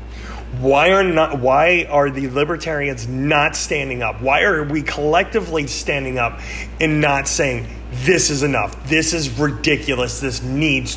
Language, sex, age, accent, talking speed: English, male, 30-49, American, 150 wpm